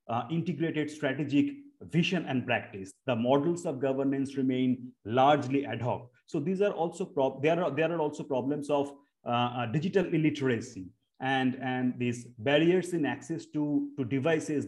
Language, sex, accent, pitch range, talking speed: English, male, Indian, 130-155 Hz, 160 wpm